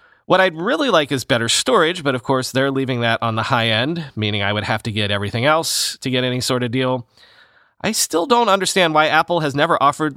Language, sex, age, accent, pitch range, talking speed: English, male, 30-49, American, 120-170 Hz, 235 wpm